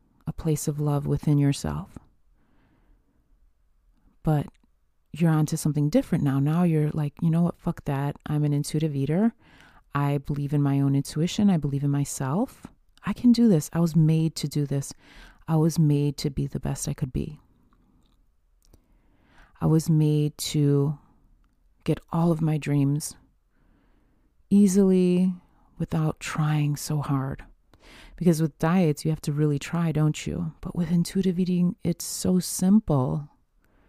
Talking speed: 150 wpm